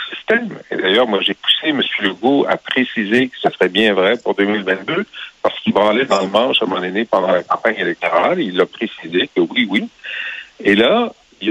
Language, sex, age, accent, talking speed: French, male, 60-79, French, 210 wpm